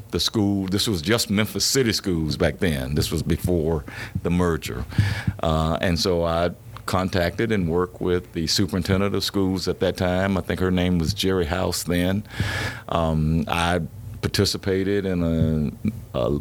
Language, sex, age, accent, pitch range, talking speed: English, male, 50-69, American, 85-110 Hz, 160 wpm